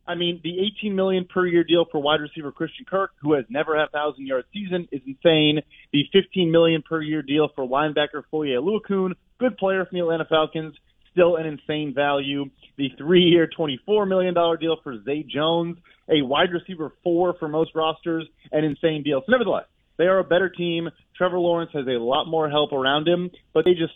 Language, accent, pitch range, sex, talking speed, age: English, American, 150-175 Hz, male, 200 wpm, 30-49